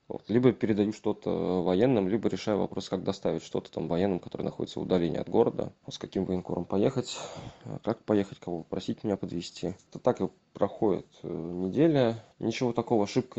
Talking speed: 165 wpm